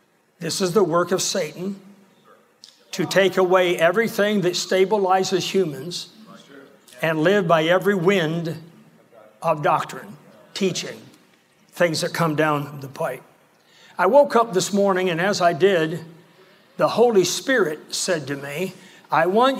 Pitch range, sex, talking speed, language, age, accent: 170-205 Hz, male, 135 wpm, English, 60-79, American